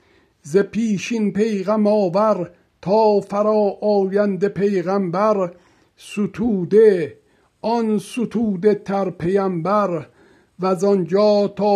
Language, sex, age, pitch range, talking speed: Persian, male, 60-79, 150-200 Hz, 85 wpm